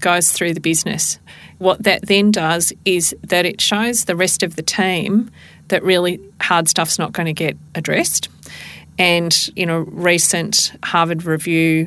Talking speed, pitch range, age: 160 wpm, 165-190 Hz, 40-59